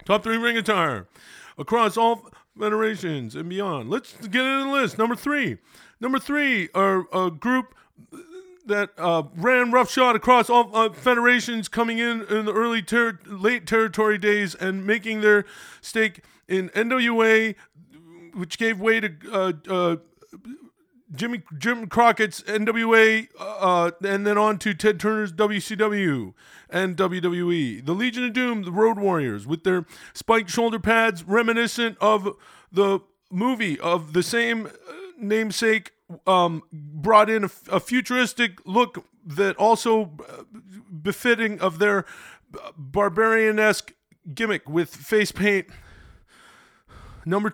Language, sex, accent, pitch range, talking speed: English, male, American, 185-230 Hz, 125 wpm